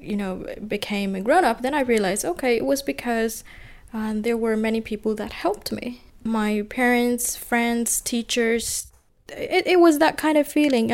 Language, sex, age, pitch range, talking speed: English, female, 20-39, 215-255 Hz, 170 wpm